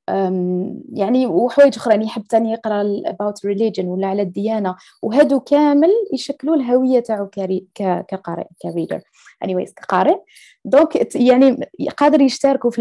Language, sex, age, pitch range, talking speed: Arabic, female, 20-39, 200-270 Hz, 120 wpm